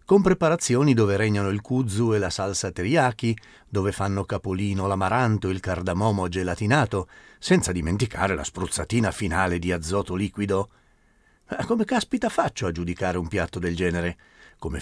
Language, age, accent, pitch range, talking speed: Italian, 40-59, native, 95-130 Hz, 150 wpm